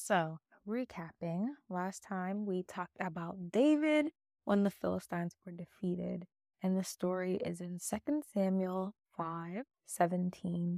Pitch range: 170-200 Hz